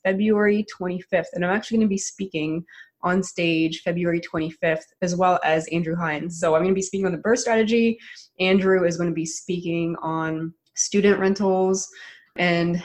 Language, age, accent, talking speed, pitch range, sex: English, 20-39, American, 165 wpm, 170-205 Hz, female